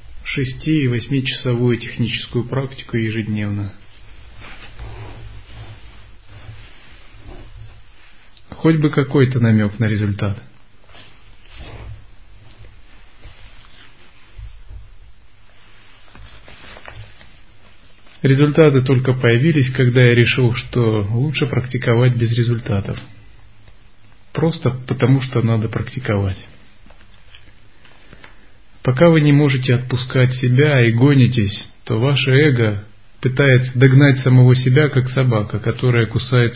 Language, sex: Russian, male